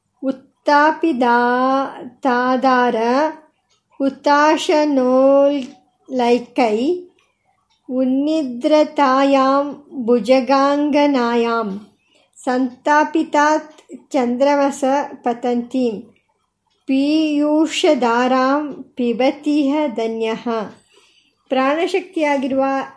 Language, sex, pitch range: Kannada, male, 240-280 Hz